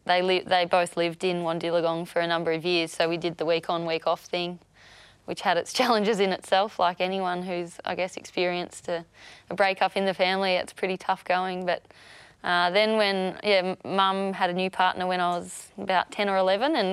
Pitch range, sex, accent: 175-195 Hz, female, Australian